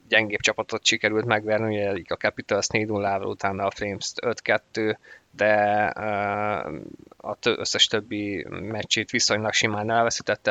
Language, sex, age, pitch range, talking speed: Hungarian, male, 20-39, 105-115 Hz, 120 wpm